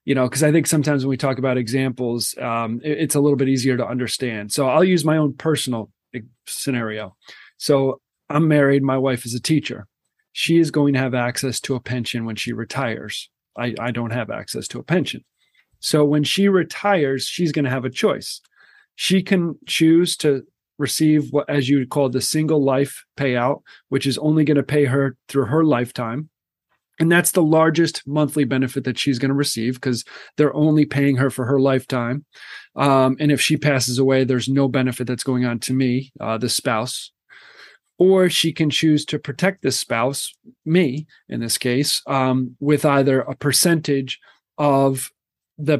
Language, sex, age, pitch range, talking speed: English, male, 30-49, 130-155 Hz, 185 wpm